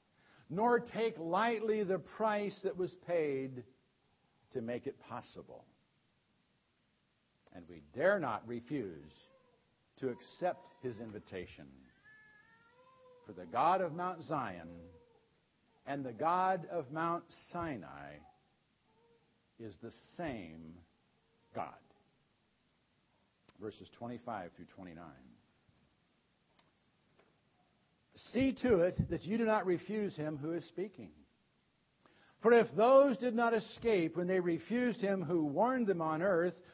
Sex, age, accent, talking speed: male, 60-79, American, 110 wpm